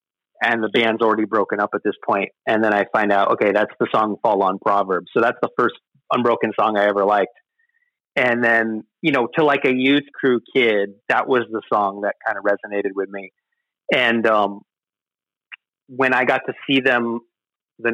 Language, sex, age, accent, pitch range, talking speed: English, male, 30-49, American, 105-125 Hz, 195 wpm